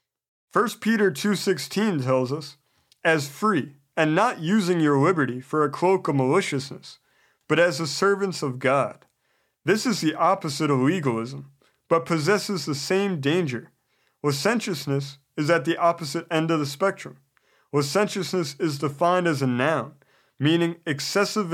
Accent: American